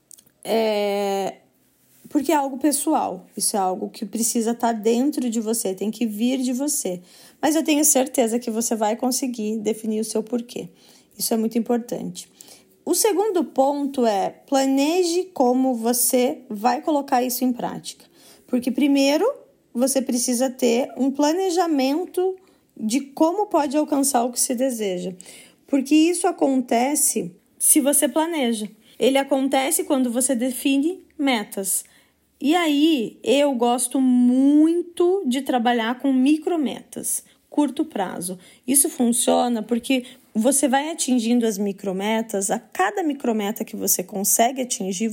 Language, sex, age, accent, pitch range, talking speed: Portuguese, female, 20-39, Brazilian, 230-290 Hz, 130 wpm